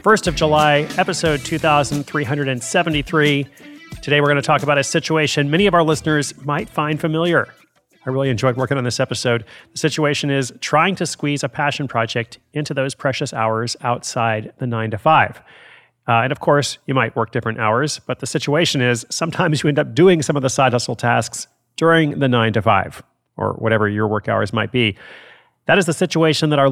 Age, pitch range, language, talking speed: 40-59, 115-145 Hz, English, 195 wpm